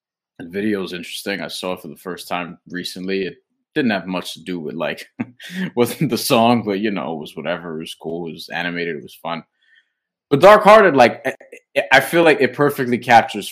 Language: English